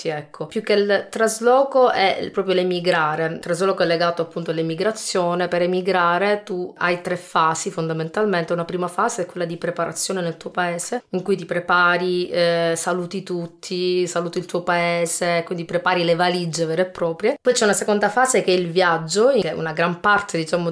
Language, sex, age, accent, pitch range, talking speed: Italian, female, 30-49, native, 165-185 Hz, 185 wpm